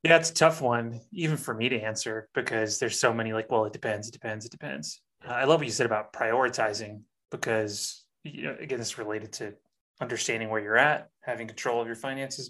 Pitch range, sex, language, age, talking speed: 115-135 Hz, male, English, 30-49, 220 wpm